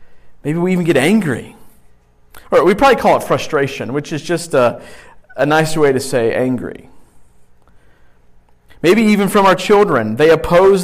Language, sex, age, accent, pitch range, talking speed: English, male, 40-59, American, 125-175 Hz, 150 wpm